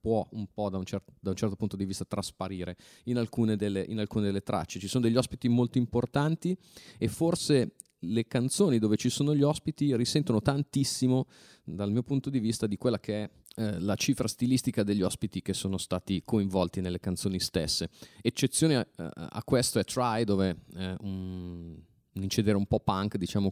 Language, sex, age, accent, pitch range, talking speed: Italian, male, 30-49, native, 95-115 Hz, 190 wpm